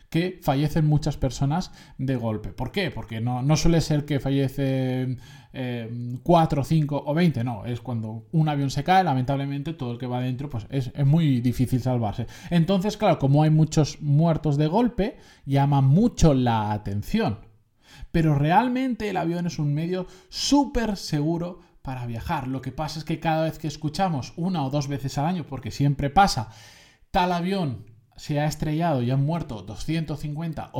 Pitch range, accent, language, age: 130-165 Hz, Spanish, Spanish, 20-39